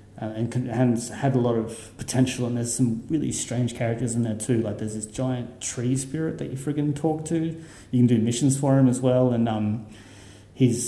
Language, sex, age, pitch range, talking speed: English, male, 30-49, 110-130 Hz, 220 wpm